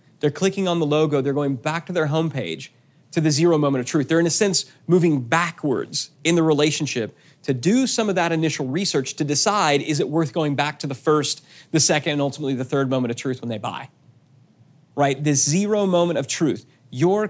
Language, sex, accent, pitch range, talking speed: English, male, American, 135-165 Hz, 215 wpm